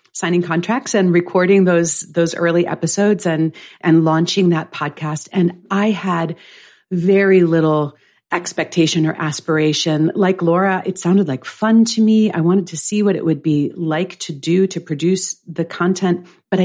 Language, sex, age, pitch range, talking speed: English, female, 40-59, 155-195 Hz, 160 wpm